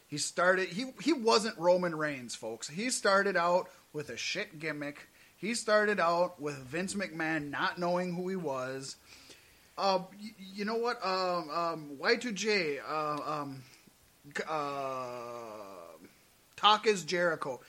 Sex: male